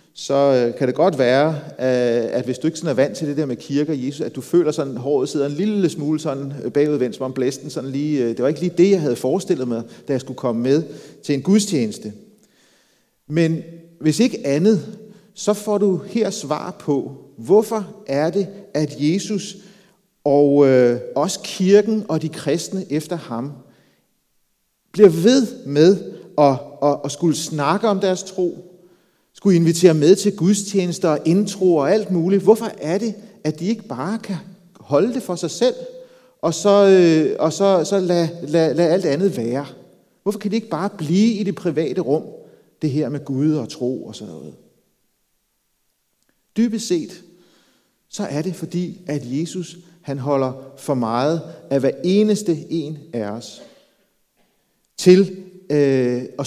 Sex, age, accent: male, 40-59, native